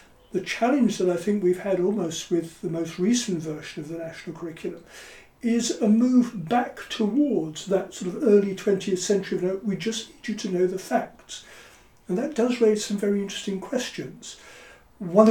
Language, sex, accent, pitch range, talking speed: English, male, British, 180-220 Hz, 180 wpm